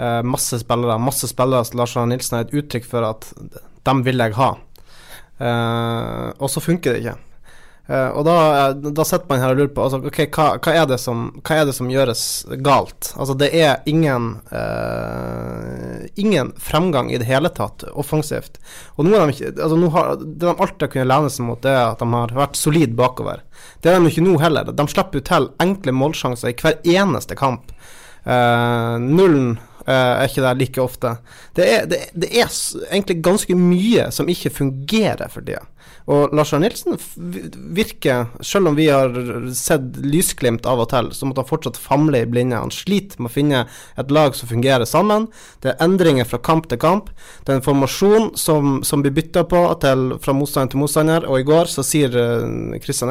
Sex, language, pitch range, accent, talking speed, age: male, English, 125-160 Hz, Norwegian, 185 wpm, 20-39